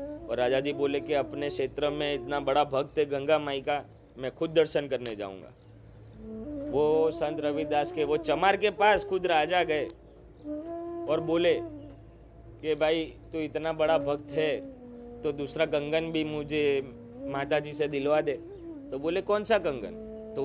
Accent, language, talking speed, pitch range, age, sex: native, Hindi, 165 wpm, 145-220 Hz, 30-49, male